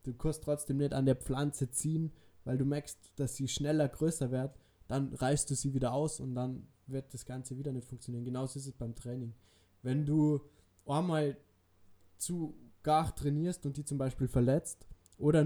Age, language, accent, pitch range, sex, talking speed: 20-39, German, German, 125-150 Hz, male, 185 wpm